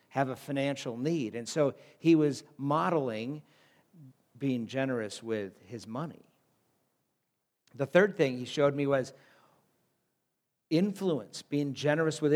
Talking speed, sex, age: 120 wpm, male, 50-69